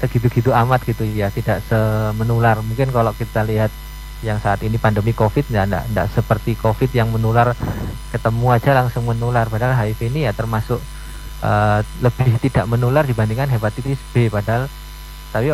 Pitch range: 105-120 Hz